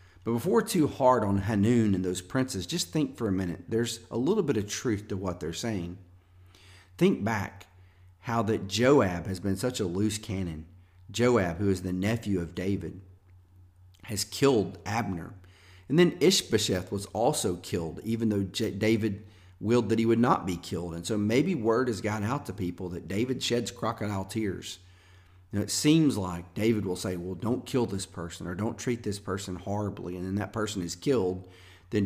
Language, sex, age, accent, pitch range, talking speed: English, male, 40-59, American, 90-115 Hz, 185 wpm